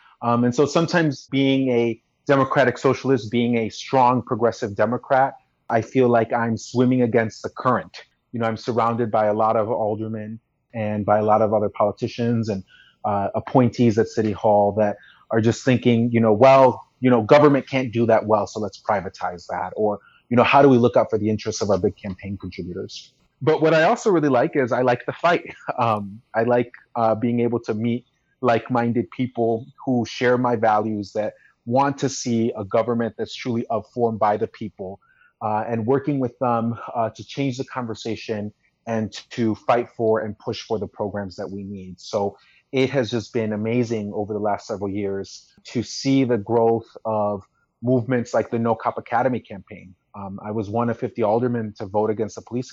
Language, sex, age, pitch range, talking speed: English, male, 30-49, 105-125 Hz, 195 wpm